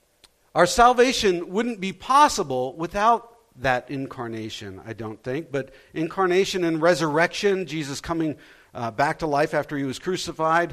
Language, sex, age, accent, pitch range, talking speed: English, male, 50-69, American, 170-235 Hz, 140 wpm